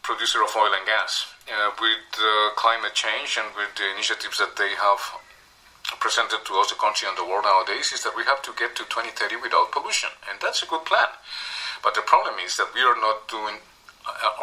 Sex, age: male, 40-59